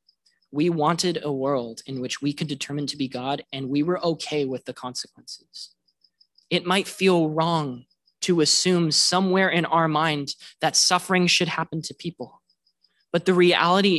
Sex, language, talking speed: male, English, 165 wpm